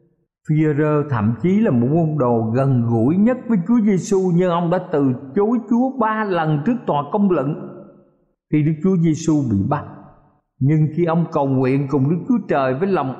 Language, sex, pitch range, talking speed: Vietnamese, male, 130-190 Hz, 190 wpm